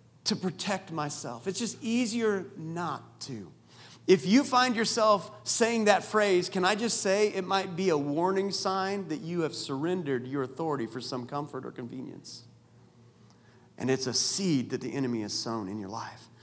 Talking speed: 175 wpm